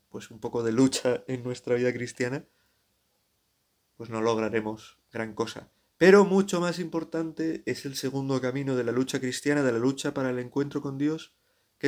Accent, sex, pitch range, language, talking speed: Spanish, male, 115-140 Hz, Spanish, 175 wpm